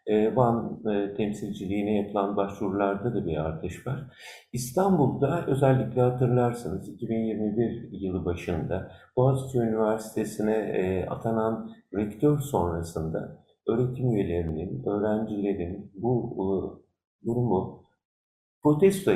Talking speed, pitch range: 80 wpm, 105-135 Hz